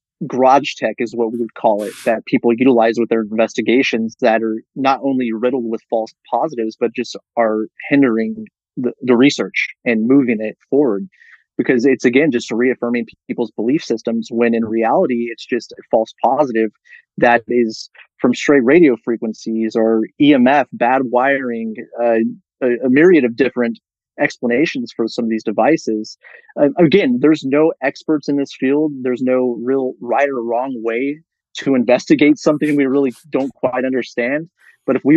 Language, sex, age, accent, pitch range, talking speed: English, male, 30-49, American, 115-135 Hz, 165 wpm